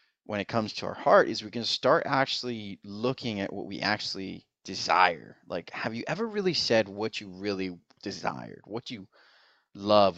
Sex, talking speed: male, 175 wpm